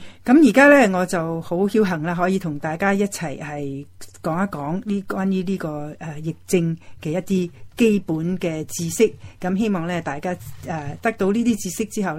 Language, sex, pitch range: Chinese, female, 155-195 Hz